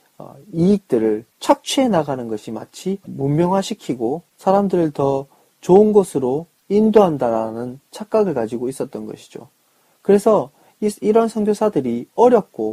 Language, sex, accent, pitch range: Korean, male, native, 140-205 Hz